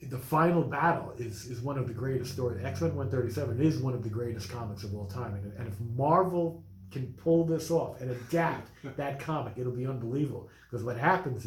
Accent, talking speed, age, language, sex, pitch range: American, 220 wpm, 40-59, English, male, 110-135 Hz